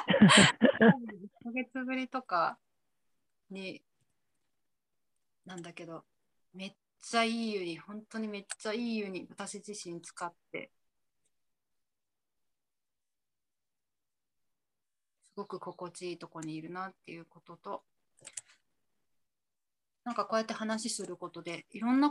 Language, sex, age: Japanese, female, 30-49